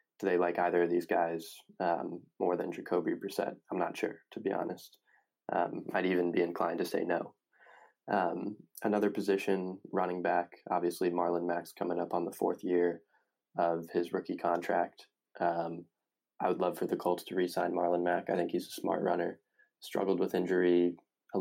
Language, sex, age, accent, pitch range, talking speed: English, male, 20-39, American, 85-90 Hz, 180 wpm